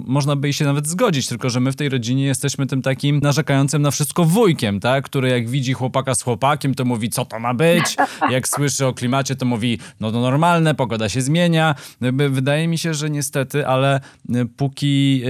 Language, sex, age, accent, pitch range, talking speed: Polish, male, 20-39, native, 110-145 Hz, 195 wpm